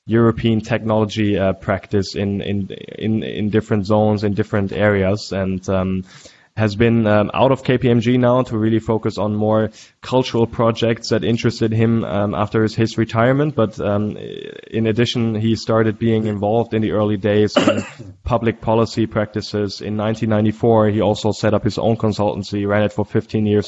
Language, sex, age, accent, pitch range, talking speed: English, male, 10-29, German, 100-110 Hz, 170 wpm